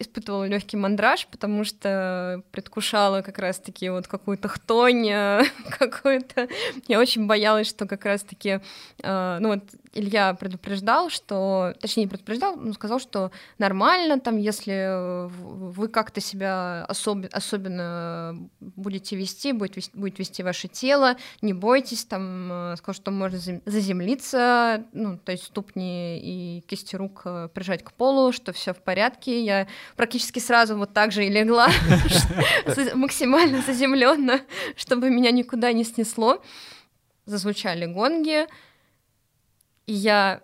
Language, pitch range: Russian, 195-240 Hz